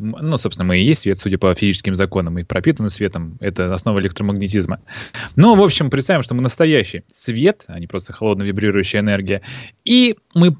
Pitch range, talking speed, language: 100-145 Hz, 175 wpm, Russian